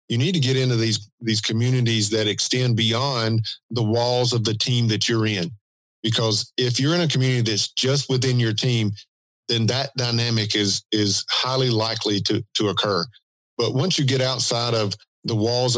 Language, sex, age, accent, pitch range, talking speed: English, male, 50-69, American, 110-130 Hz, 185 wpm